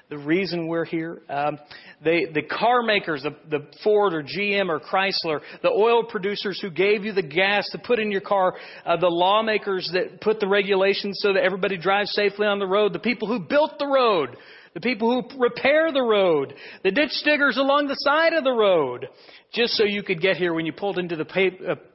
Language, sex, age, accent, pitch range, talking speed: English, male, 40-59, American, 160-205 Hz, 210 wpm